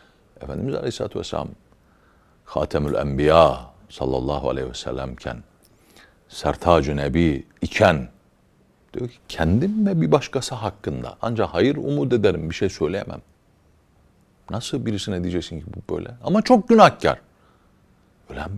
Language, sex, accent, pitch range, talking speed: Turkish, male, native, 80-125 Hz, 110 wpm